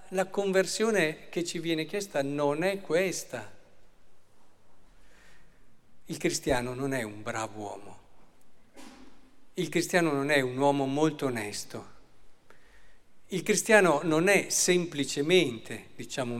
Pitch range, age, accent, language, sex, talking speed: 140-190 Hz, 50-69, native, Italian, male, 110 wpm